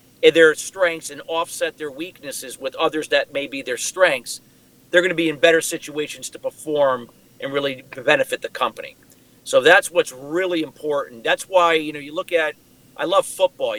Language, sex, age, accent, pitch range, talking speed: English, male, 50-69, American, 150-185 Hz, 185 wpm